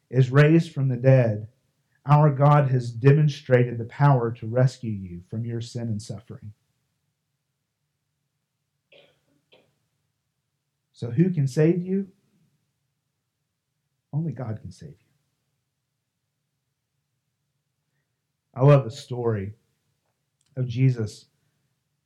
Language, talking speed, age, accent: English, 95 wpm, 40-59, American